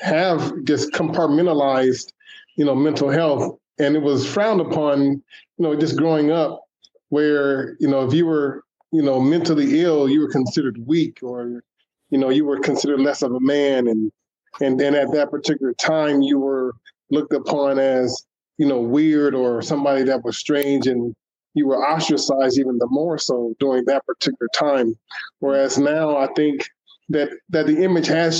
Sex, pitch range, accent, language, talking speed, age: male, 135-160 Hz, American, English, 175 wpm, 20-39